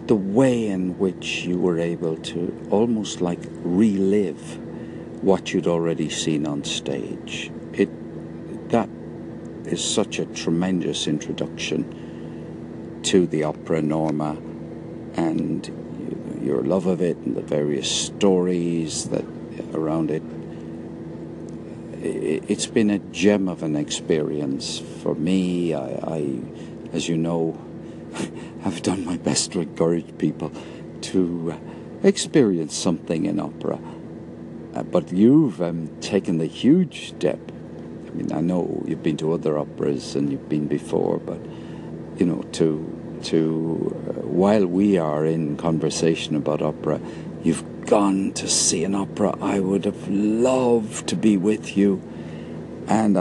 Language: English